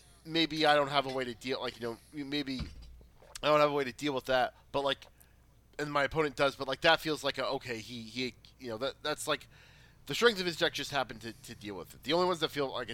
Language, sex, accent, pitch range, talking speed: English, male, American, 120-145 Hz, 275 wpm